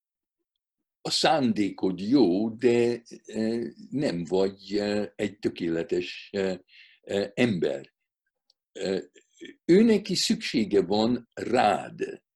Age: 60-79